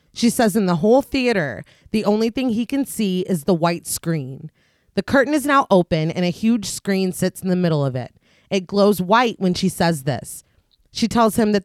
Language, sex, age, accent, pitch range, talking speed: English, female, 30-49, American, 170-220 Hz, 215 wpm